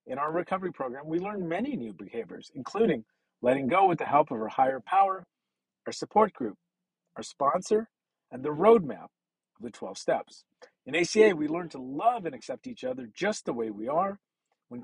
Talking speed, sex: 190 wpm, male